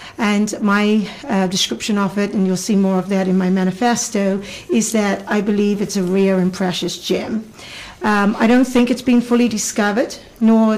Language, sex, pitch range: English, female, 200-230 Hz